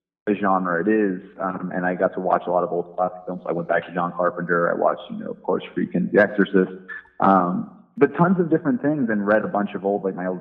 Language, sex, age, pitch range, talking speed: English, male, 30-49, 90-100 Hz, 265 wpm